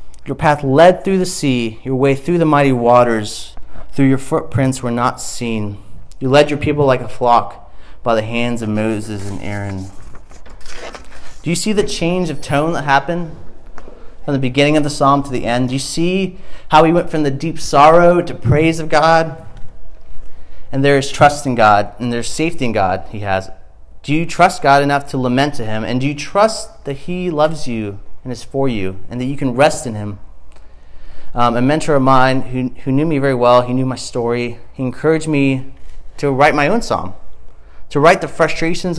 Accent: American